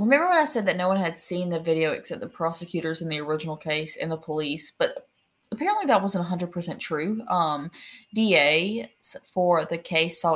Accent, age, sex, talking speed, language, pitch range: American, 20-39, female, 190 wpm, English, 160-190 Hz